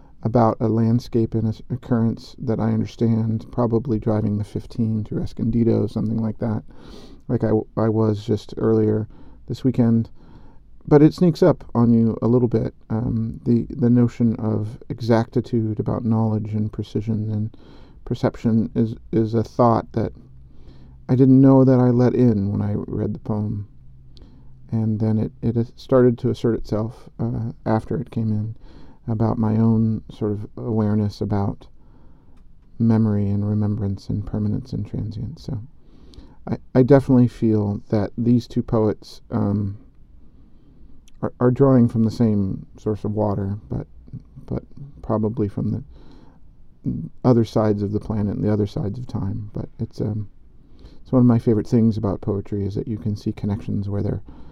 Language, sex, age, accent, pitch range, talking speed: English, male, 40-59, American, 105-120 Hz, 160 wpm